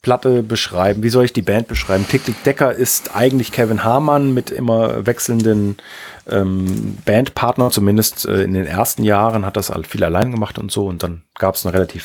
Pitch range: 110-135 Hz